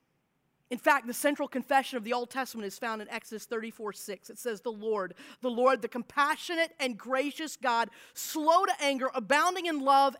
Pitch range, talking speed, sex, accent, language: 215-280 Hz, 190 wpm, female, American, English